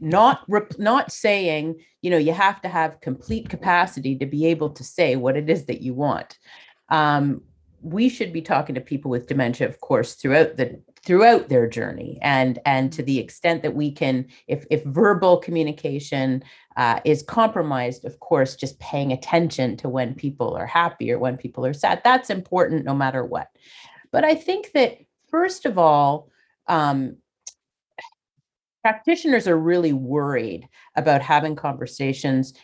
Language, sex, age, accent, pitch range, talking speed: English, female, 40-59, American, 135-185 Hz, 165 wpm